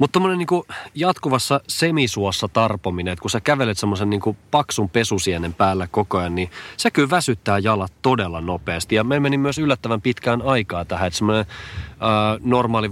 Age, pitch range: 30-49, 95-135 Hz